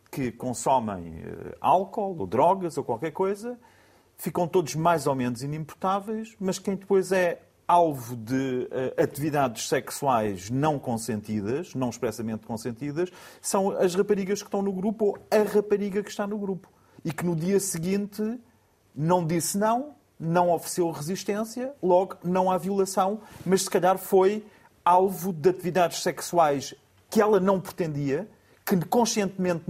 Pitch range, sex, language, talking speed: 140-185 Hz, male, Portuguese, 140 wpm